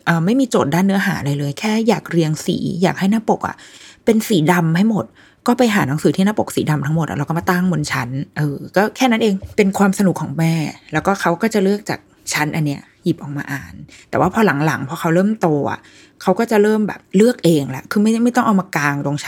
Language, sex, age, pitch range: Thai, female, 20-39, 150-200 Hz